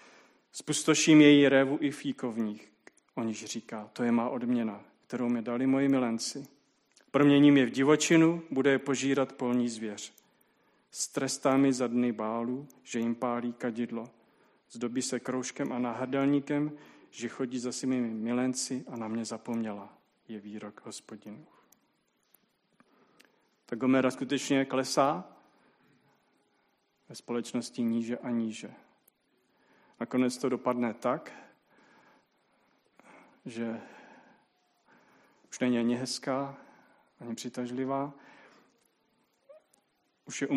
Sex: male